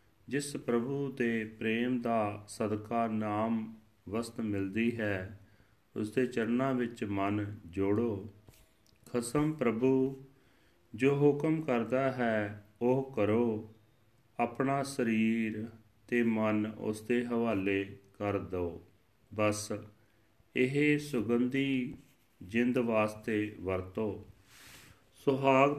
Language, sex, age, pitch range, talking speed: Punjabi, male, 40-59, 110-130 Hz, 90 wpm